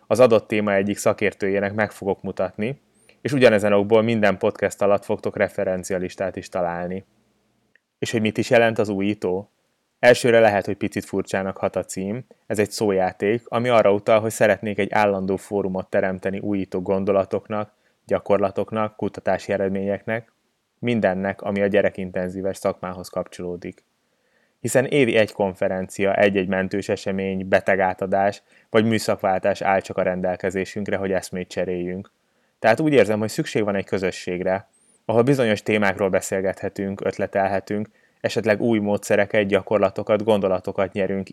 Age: 20-39